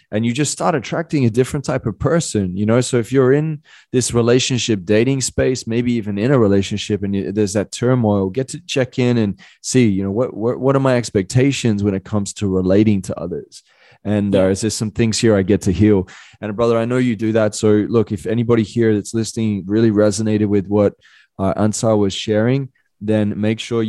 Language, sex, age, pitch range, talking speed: English, male, 20-39, 105-120 Hz, 215 wpm